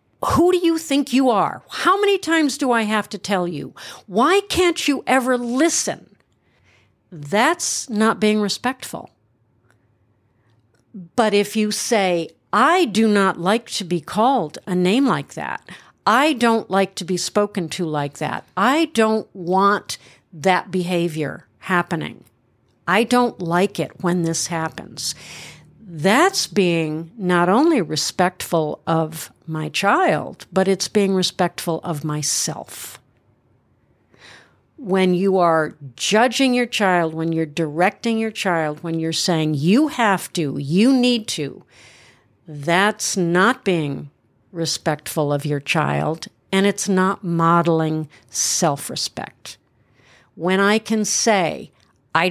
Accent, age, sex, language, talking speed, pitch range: American, 50-69, female, English, 130 wpm, 155-215 Hz